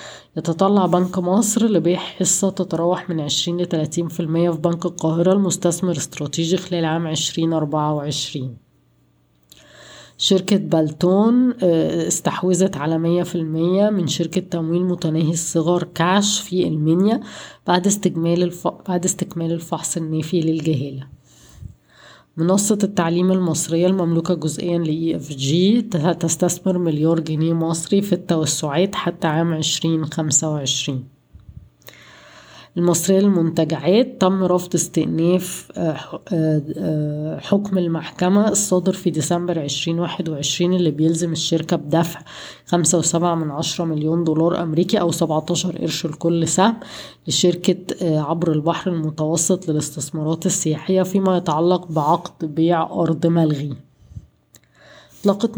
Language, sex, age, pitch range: Arabic, female, 20-39, 160-180 Hz